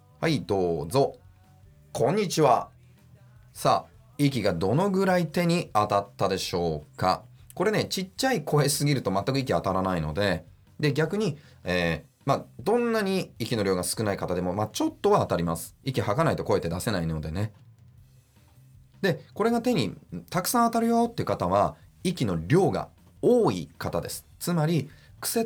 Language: Japanese